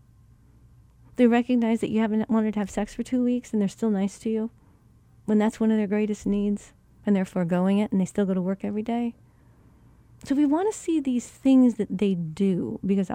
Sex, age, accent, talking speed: female, 40-59, American, 220 wpm